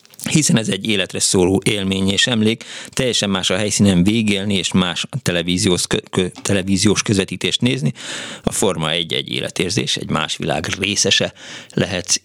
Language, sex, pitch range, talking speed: Hungarian, male, 95-125 Hz, 150 wpm